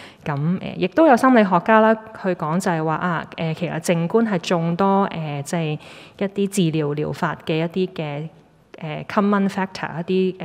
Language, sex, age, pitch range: Chinese, female, 20-39, 155-190 Hz